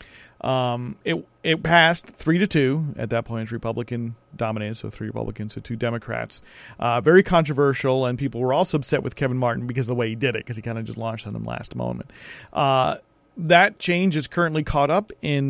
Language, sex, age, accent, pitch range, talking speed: English, male, 40-59, American, 115-155 Hz, 210 wpm